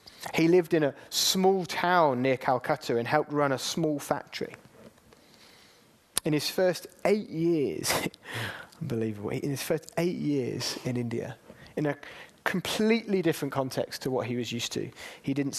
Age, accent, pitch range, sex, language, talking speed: 30-49, British, 120-155 Hz, male, English, 155 wpm